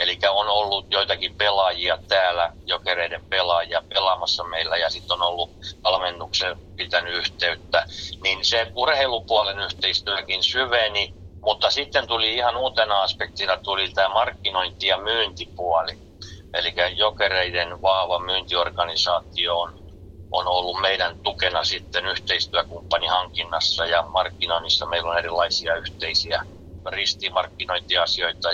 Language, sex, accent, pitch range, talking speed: Finnish, male, native, 85-95 Hz, 105 wpm